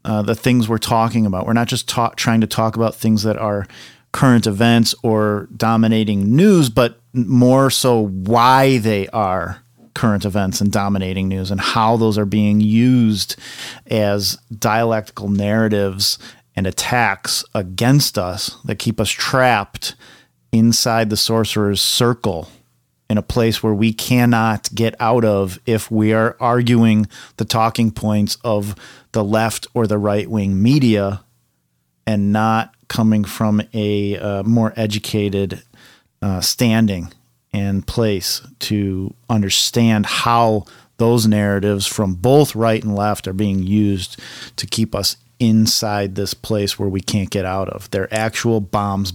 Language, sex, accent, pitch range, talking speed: English, male, American, 100-115 Hz, 145 wpm